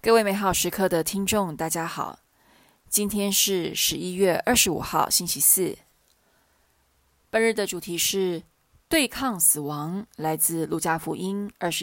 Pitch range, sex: 165-210 Hz, female